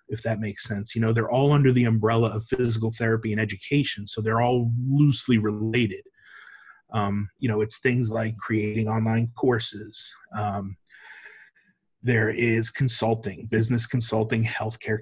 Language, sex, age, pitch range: English, male, 30-49, 105-120 Hz